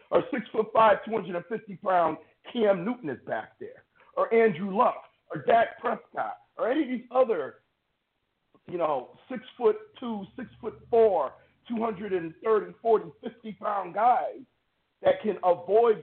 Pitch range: 180-265 Hz